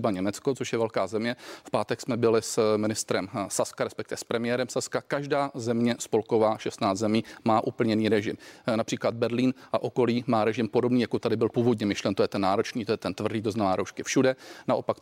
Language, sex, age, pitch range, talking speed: Czech, male, 40-59, 110-130 Hz, 190 wpm